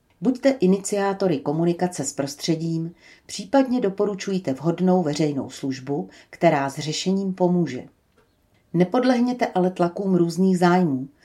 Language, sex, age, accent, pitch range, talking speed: Czech, female, 40-59, native, 150-190 Hz, 100 wpm